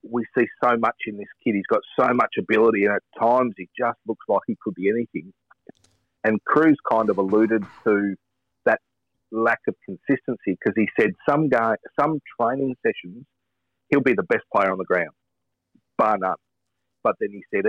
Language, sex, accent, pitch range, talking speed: English, male, Australian, 95-115 Hz, 185 wpm